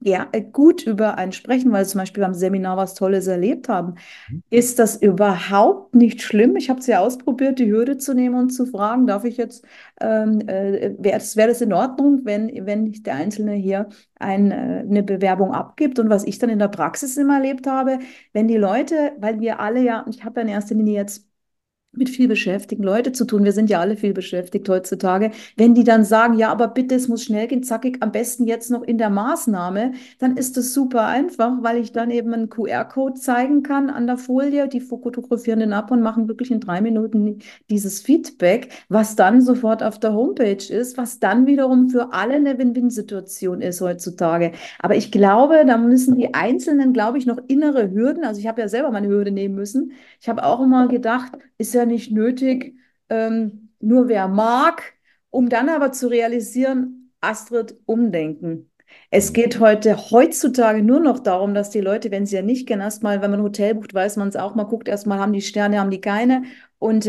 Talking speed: 200 wpm